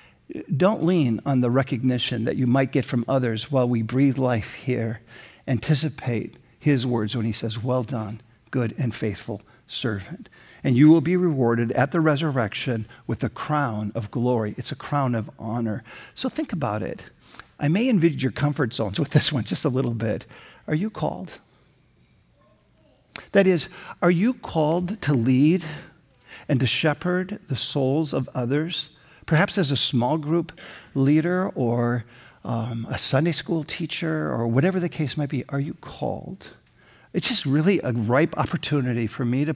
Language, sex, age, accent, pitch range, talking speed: English, male, 50-69, American, 120-160 Hz, 165 wpm